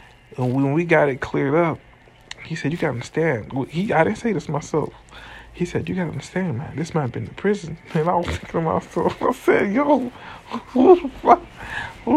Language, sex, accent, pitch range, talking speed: English, male, American, 125-155 Hz, 215 wpm